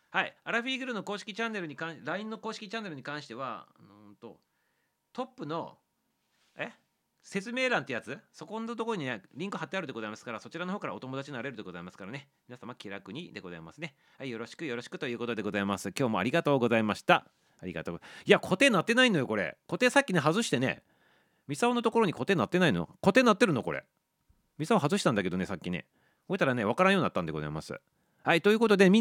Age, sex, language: 40-59, male, Japanese